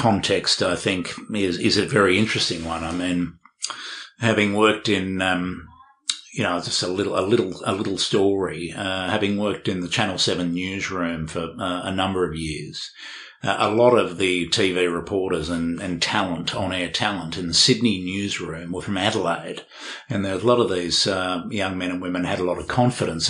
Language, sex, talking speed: English, male, 185 wpm